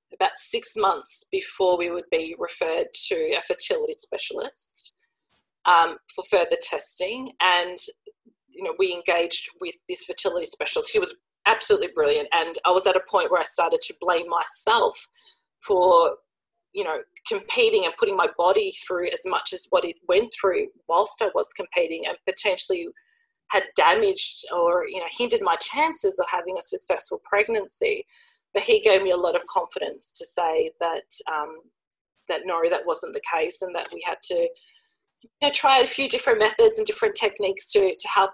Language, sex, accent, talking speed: English, female, Australian, 175 wpm